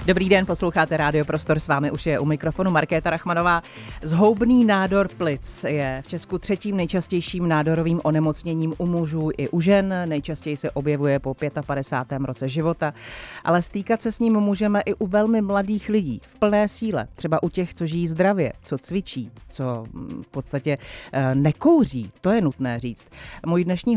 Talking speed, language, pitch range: 170 wpm, Czech, 140-175 Hz